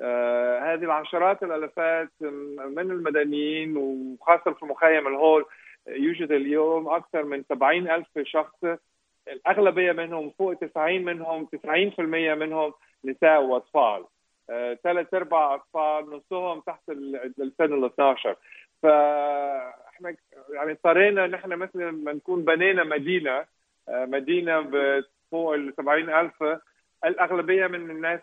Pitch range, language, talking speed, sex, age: 140-170 Hz, Arabic, 115 wpm, male, 50-69